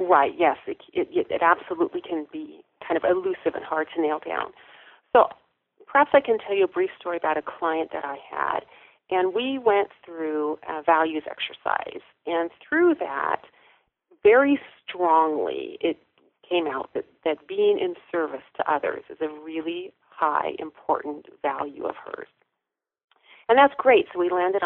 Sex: female